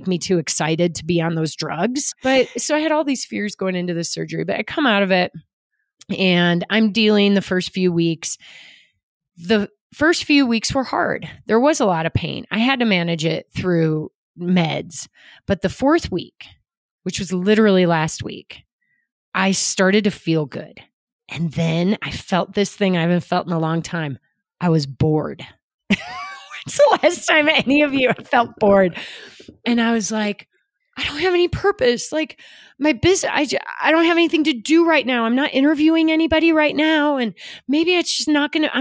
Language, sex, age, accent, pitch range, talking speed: English, female, 30-49, American, 175-290 Hz, 195 wpm